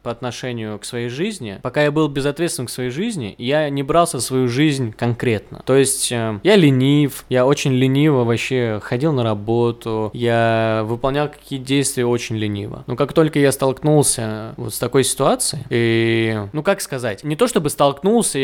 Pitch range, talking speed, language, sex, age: 120-155 Hz, 175 wpm, Russian, male, 20-39